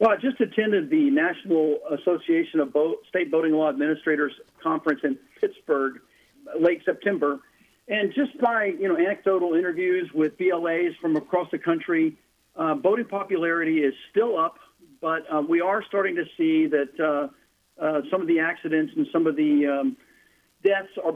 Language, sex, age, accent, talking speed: English, male, 50-69, American, 165 wpm